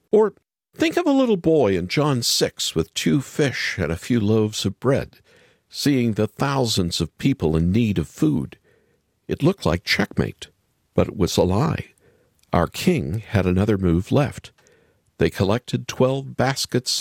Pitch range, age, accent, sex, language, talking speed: 95-150 Hz, 50-69, American, male, English, 160 wpm